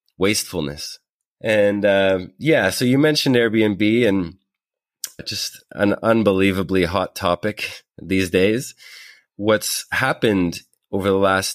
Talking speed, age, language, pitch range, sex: 110 wpm, 30-49, English, 90-110 Hz, male